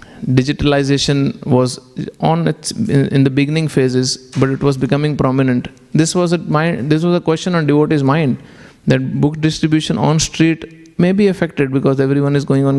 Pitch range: 135-165 Hz